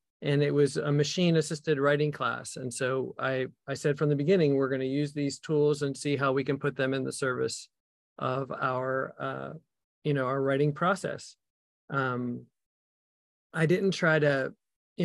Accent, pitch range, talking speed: American, 140-170 Hz, 180 wpm